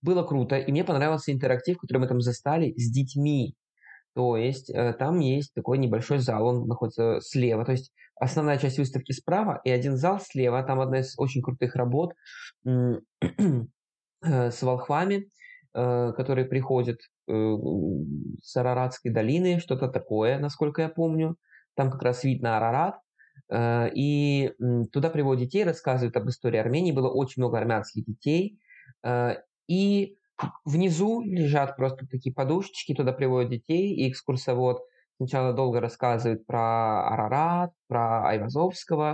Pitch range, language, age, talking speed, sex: 125-145 Hz, Russian, 20-39, 130 wpm, male